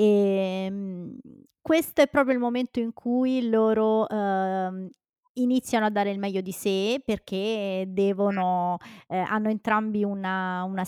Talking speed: 110 wpm